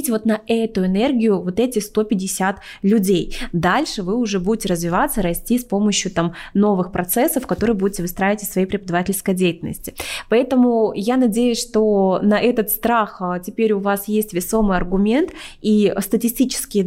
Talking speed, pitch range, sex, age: 145 wpm, 190-225 Hz, female, 20-39